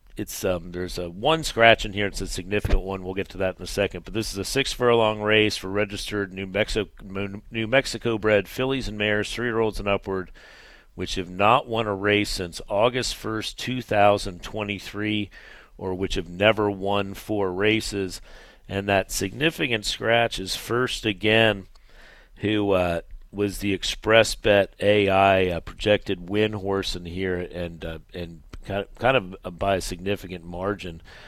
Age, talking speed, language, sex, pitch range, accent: 50-69, 165 wpm, English, male, 95-105 Hz, American